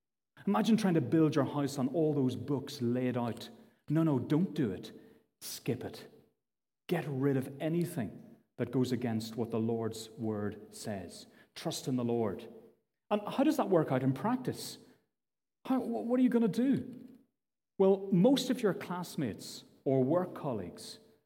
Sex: male